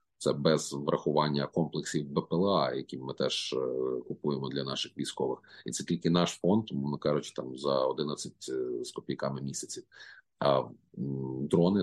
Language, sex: Ukrainian, male